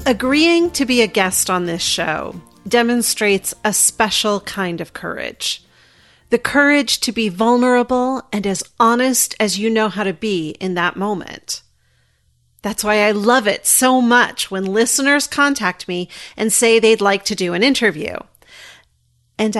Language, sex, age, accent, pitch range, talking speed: English, female, 40-59, American, 185-245 Hz, 155 wpm